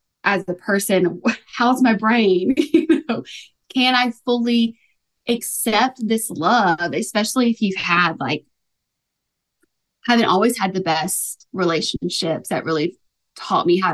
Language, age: English, 20-39